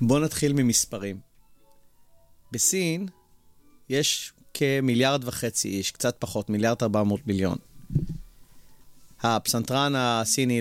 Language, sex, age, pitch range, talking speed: Hebrew, male, 30-49, 115-145 Hz, 90 wpm